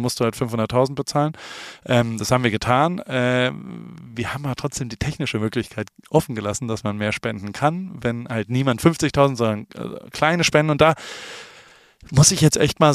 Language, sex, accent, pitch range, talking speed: German, male, German, 115-150 Hz, 170 wpm